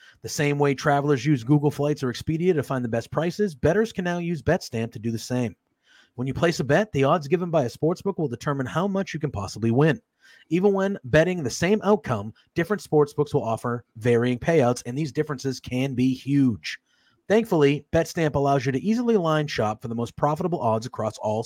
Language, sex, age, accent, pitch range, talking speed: English, male, 30-49, American, 125-165 Hz, 210 wpm